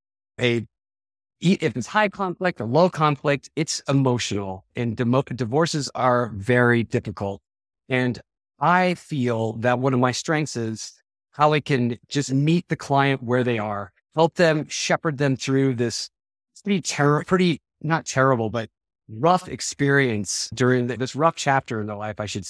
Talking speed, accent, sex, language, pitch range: 150 wpm, American, male, English, 120-155 Hz